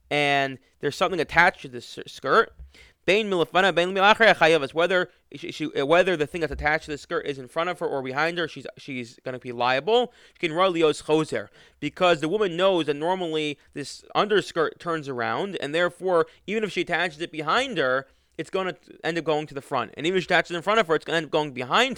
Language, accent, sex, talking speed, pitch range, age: English, American, male, 210 wpm, 145-185 Hz, 20-39